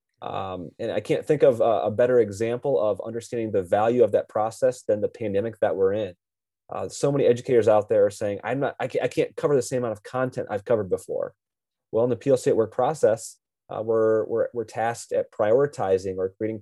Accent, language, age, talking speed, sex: American, English, 30-49, 225 wpm, male